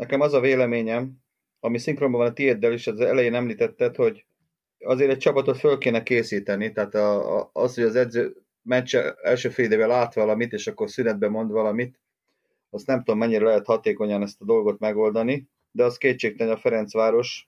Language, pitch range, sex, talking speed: Hungarian, 115-170 Hz, male, 170 wpm